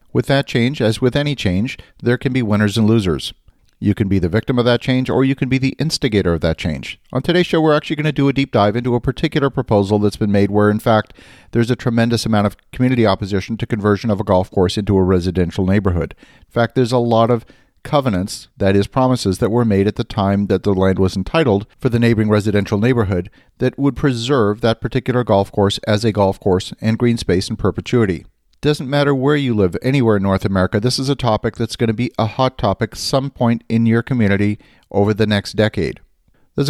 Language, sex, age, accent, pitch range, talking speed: English, male, 40-59, American, 100-125 Hz, 230 wpm